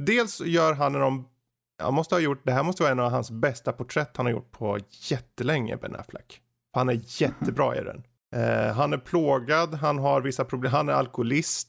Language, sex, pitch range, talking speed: Swedish, male, 120-155 Hz, 205 wpm